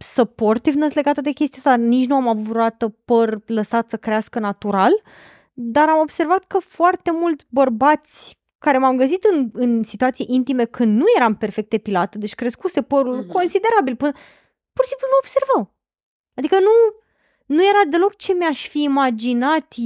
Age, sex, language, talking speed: 20-39, female, Romanian, 155 wpm